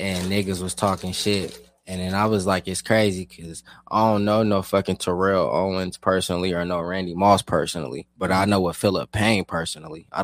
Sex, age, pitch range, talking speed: male, 20-39, 90-100 Hz, 200 wpm